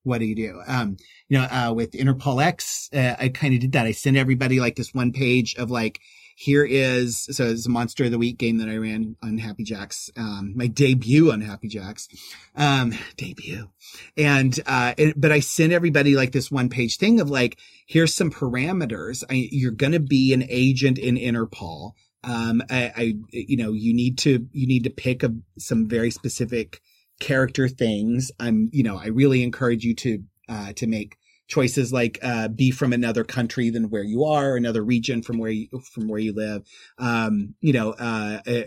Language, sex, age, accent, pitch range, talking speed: English, male, 30-49, American, 115-135 Hz, 200 wpm